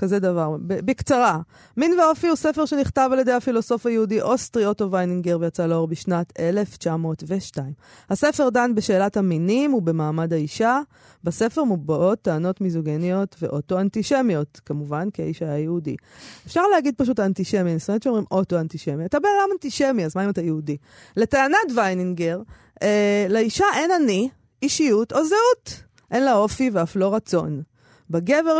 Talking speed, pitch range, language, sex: 145 wpm, 170-240 Hz, Hebrew, female